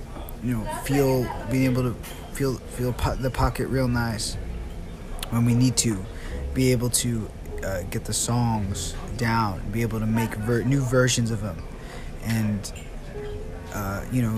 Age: 20-39